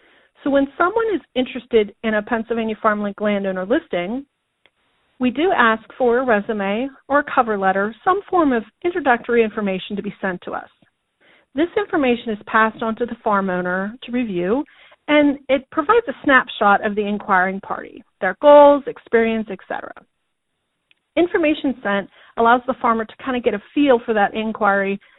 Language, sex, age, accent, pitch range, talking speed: English, female, 40-59, American, 205-265 Hz, 165 wpm